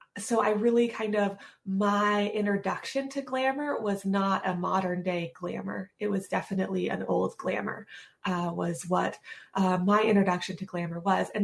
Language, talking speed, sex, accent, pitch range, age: English, 165 wpm, female, American, 185-215 Hz, 20-39